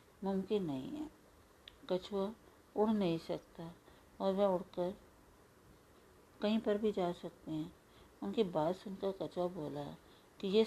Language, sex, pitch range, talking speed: Hindi, female, 160-205 Hz, 130 wpm